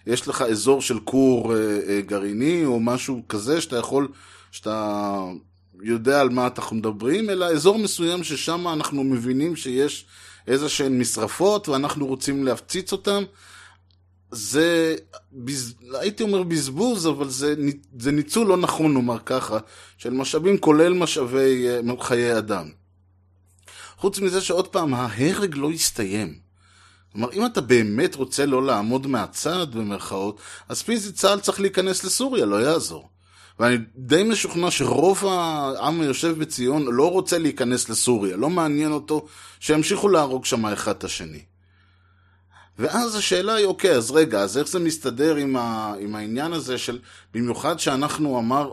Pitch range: 110-160 Hz